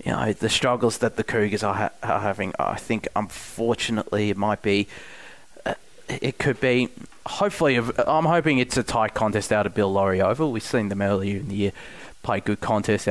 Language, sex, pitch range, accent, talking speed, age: English, male, 100-120 Hz, Australian, 195 wpm, 20-39